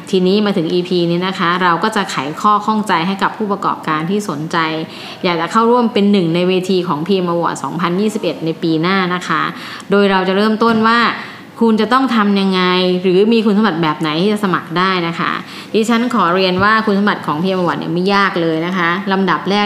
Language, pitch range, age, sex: Thai, 170-205 Hz, 20-39, female